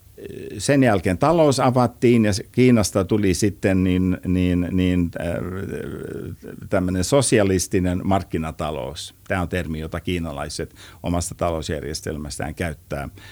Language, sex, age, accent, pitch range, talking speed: Finnish, male, 50-69, native, 90-120 Hz, 100 wpm